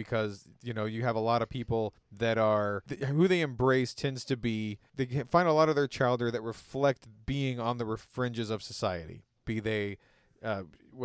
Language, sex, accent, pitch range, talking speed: English, male, American, 110-135 Hz, 190 wpm